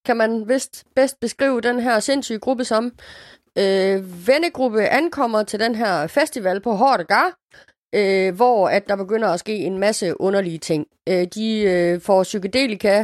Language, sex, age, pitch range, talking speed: Danish, female, 30-49, 185-235 Hz, 140 wpm